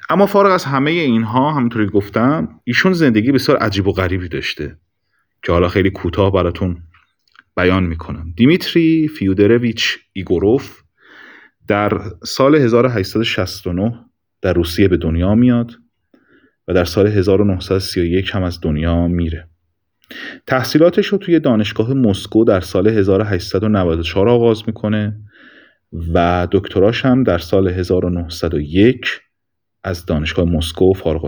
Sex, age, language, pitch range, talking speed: male, 30-49, Persian, 85-115 Hz, 115 wpm